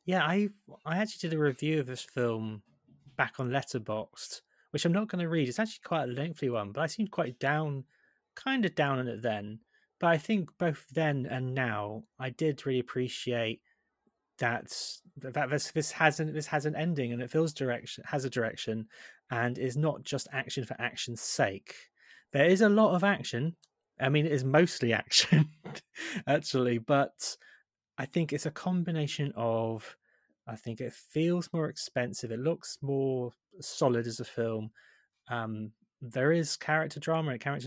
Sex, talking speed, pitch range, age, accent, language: male, 175 wpm, 125-155 Hz, 20-39, British, English